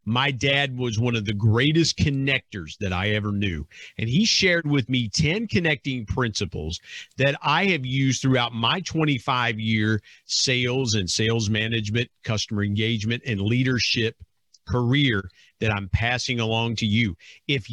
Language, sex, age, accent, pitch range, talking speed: English, male, 50-69, American, 110-145 Hz, 150 wpm